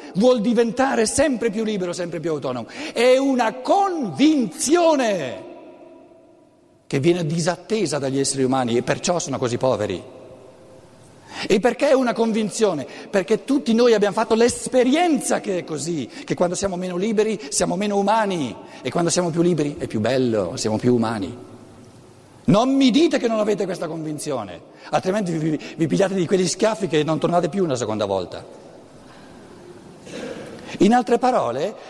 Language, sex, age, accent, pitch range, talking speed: Italian, male, 50-69, native, 160-235 Hz, 150 wpm